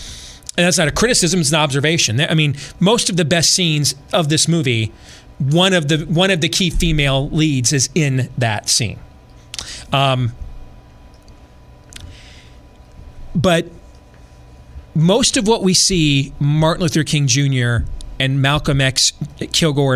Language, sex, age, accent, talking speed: English, male, 40-59, American, 140 wpm